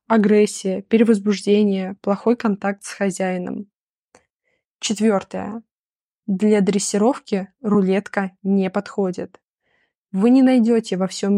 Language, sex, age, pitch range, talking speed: Russian, female, 20-39, 190-225 Hz, 90 wpm